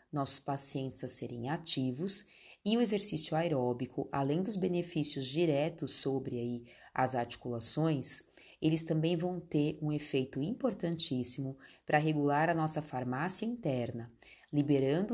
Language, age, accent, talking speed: Portuguese, 30-49, Brazilian, 125 wpm